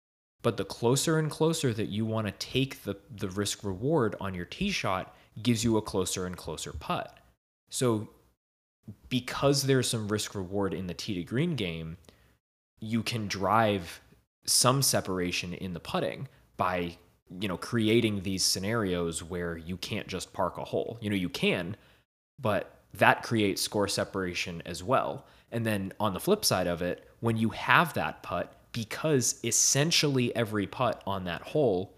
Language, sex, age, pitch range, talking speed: English, male, 20-39, 90-115 Hz, 160 wpm